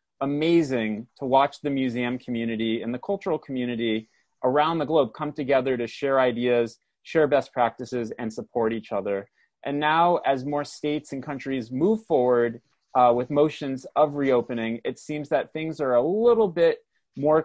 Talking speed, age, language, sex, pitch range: 165 wpm, 30-49, English, male, 125-150 Hz